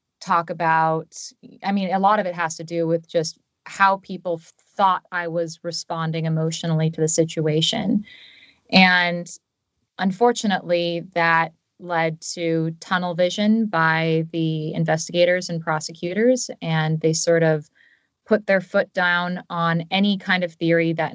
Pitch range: 160-185 Hz